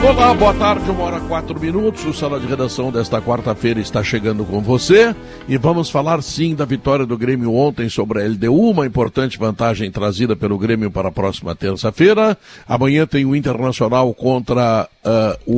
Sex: male